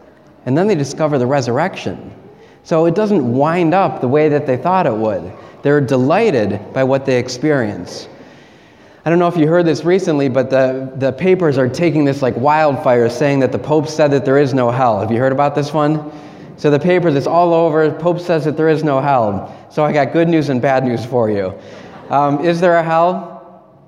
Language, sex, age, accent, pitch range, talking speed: English, male, 30-49, American, 130-175 Hz, 215 wpm